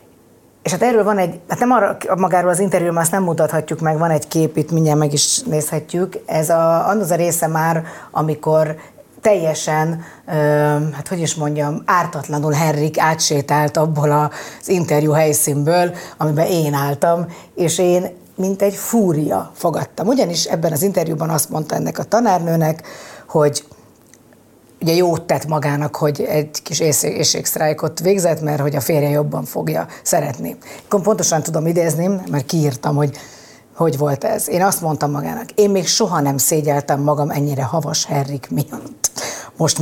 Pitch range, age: 150-185 Hz, 30-49